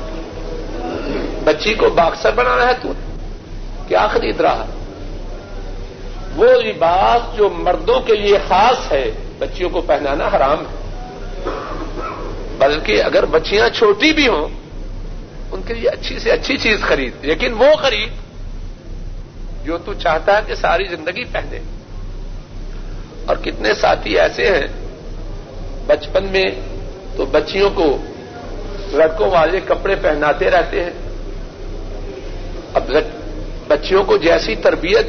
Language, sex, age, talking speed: Urdu, male, 60-79, 115 wpm